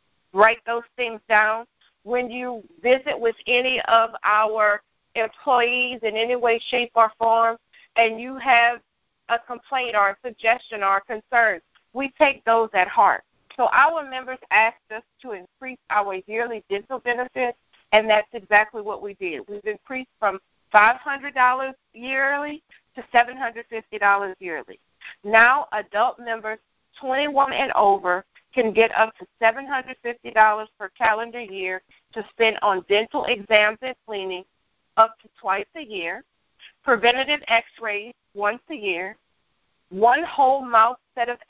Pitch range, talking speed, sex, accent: 215-255 Hz, 140 wpm, female, American